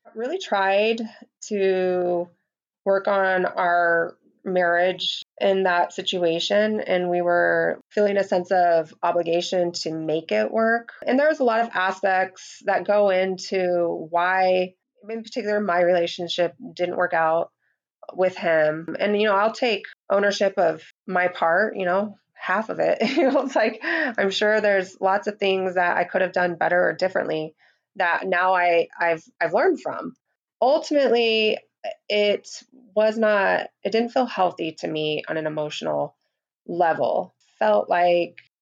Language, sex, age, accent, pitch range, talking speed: English, female, 20-39, American, 170-210 Hz, 150 wpm